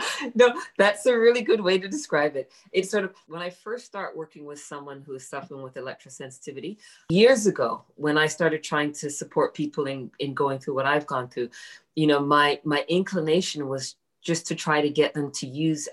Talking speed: 205 wpm